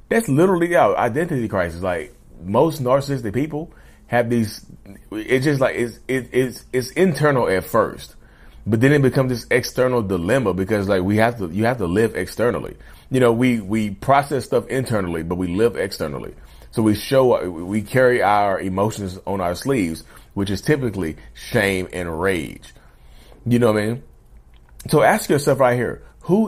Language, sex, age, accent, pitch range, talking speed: English, male, 30-49, American, 90-125 Hz, 170 wpm